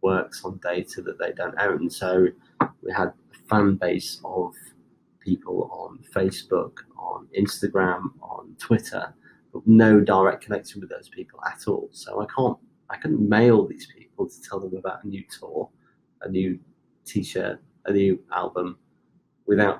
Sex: male